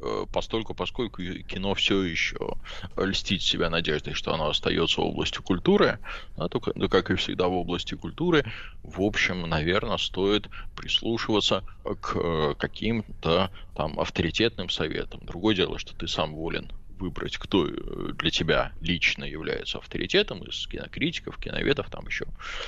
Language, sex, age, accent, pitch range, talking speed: Russian, male, 20-39, native, 90-115 Hz, 125 wpm